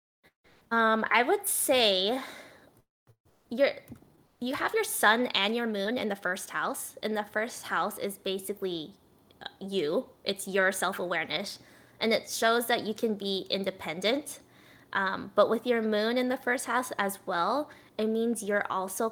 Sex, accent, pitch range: female, American, 185-225 Hz